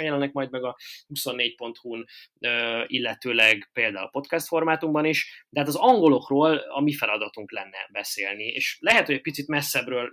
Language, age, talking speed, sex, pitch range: Hungarian, 20-39, 155 wpm, male, 115-140 Hz